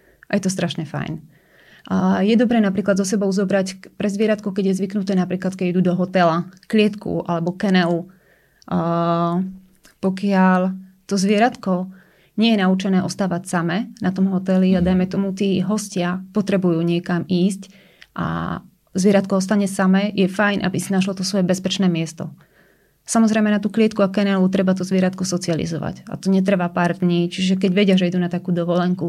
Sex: female